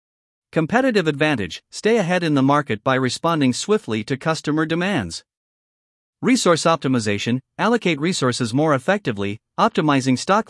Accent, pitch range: American, 125-175 Hz